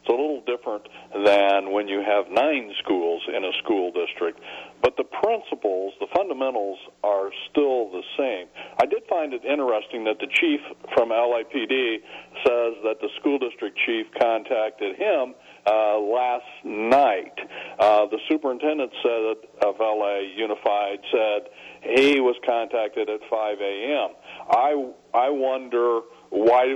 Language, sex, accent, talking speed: English, male, American, 140 wpm